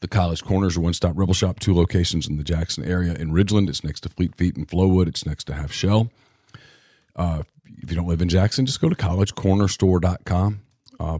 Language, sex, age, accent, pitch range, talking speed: English, male, 40-59, American, 85-100 Hz, 210 wpm